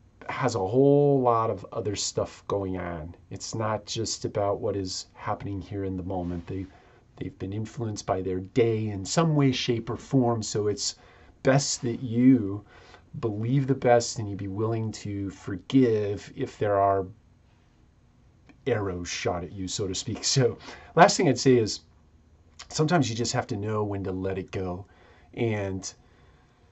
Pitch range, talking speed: 95-120 Hz, 170 wpm